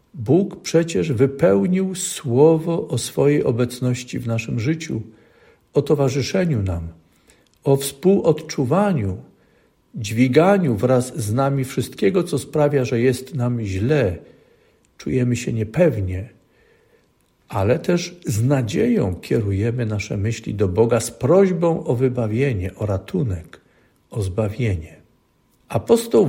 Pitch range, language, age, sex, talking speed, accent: 115-155 Hz, Polish, 50-69, male, 105 wpm, native